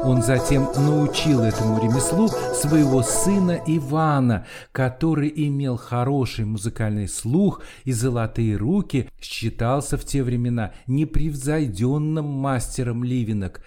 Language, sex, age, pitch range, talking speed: Russian, male, 50-69, 115-150 Hz, 100 wpm